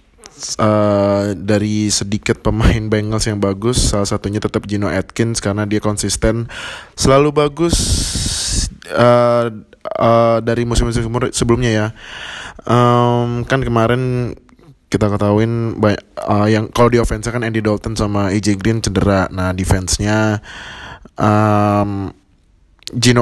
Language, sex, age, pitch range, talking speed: Indonesian, male, 20-39, 100-125 Hz, 110 wpm